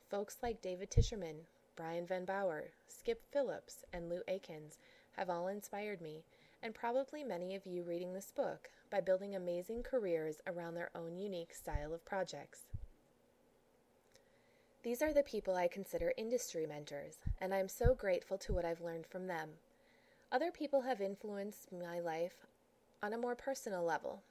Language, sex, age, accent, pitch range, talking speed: English, female, 20-39, American, 170-235 Hz, 160 wpm